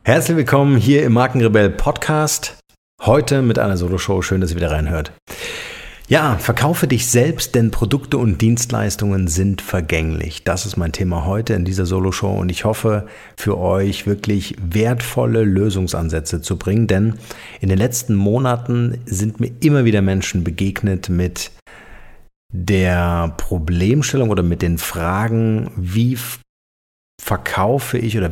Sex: male